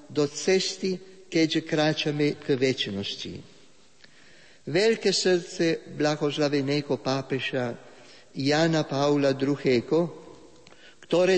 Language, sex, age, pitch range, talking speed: Slovak, male, 50-69, 150-180 Hz, 75 wpm